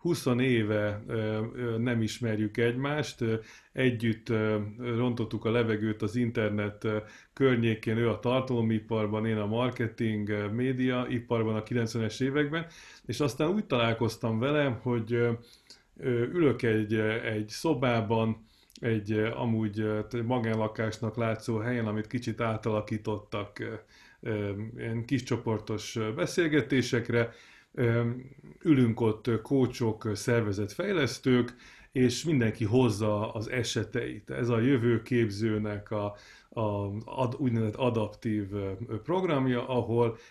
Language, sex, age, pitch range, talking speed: Hungarian, male, 30-49, 110-125 Hz, 90 wpm